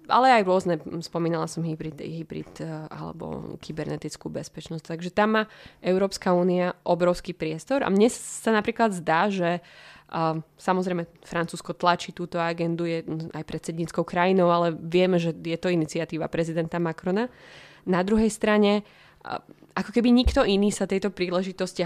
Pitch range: 165-195 Hz